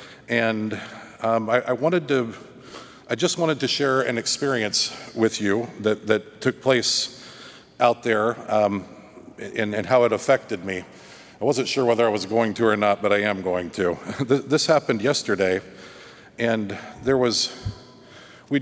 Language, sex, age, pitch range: English, male, 50-69, 105-125 Hz